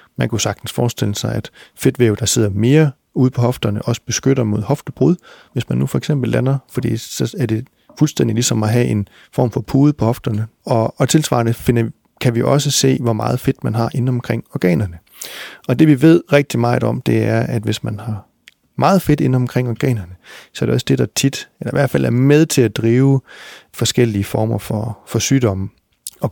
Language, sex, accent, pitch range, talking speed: Danish, male, native, 110-130 Hz, 210 wpm